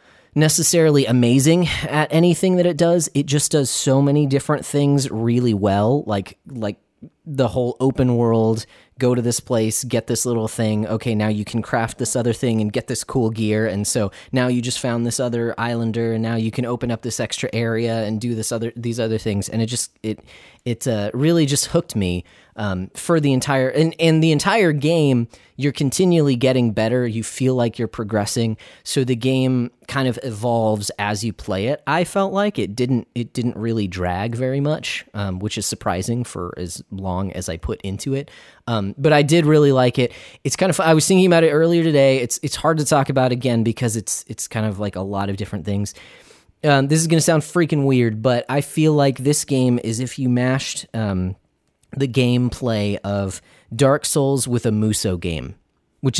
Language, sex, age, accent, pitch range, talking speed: English, male, 20-39, American, 110-140 Hz, 205 wpm